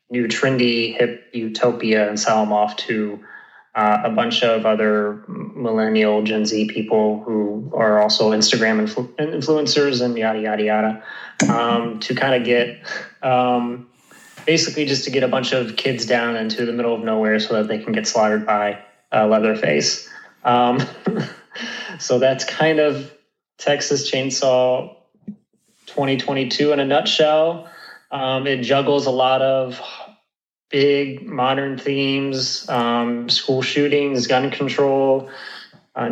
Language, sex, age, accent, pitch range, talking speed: English, male, 20-39, American, 115-135 Hz, 135 wpm